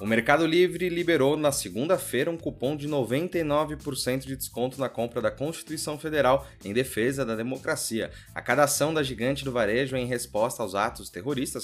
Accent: Brazilian